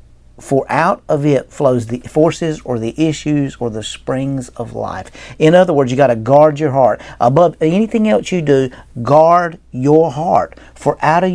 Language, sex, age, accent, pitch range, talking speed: English, male, 50-69, American, 125-160 Hz, 185 wpm